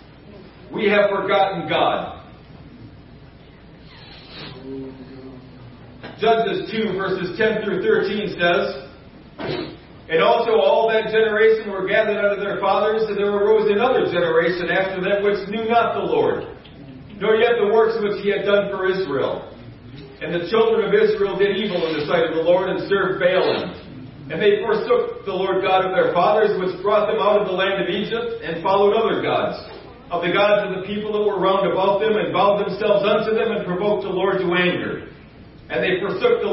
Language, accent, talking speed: English, American, 175 wpm